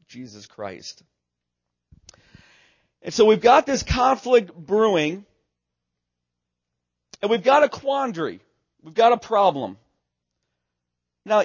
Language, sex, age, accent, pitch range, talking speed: English, male, 40-59, American, 155-250 Hz, 100 wpm